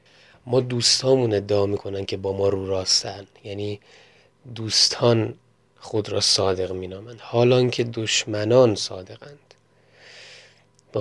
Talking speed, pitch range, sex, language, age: 110 wpm, 100-125 Hz, male, Persian, 30-49